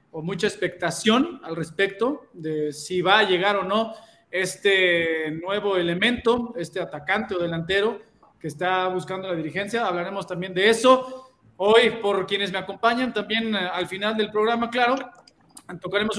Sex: male